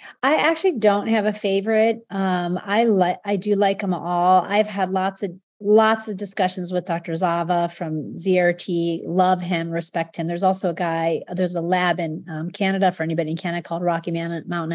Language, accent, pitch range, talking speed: English, American, 165-215 Hz, 185 wpm